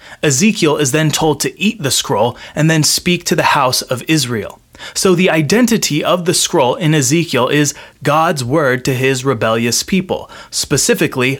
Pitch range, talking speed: 130-165 Hz, 170 wpm